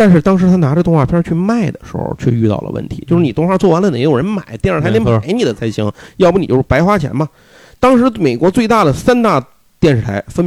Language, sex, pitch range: Chinese, male, 115-175 Hz